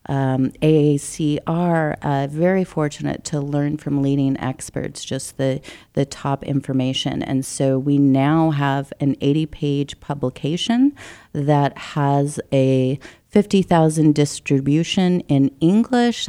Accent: American